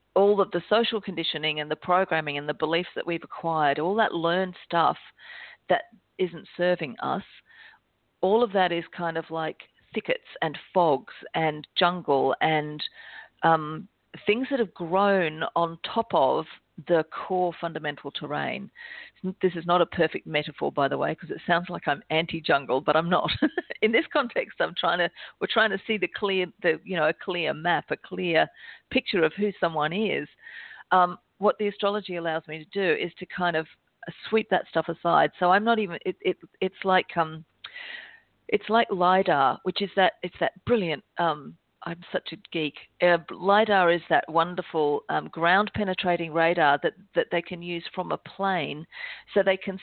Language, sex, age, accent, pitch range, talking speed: English, female, 50-69, Australian, 160-195 Hz, 180 wpm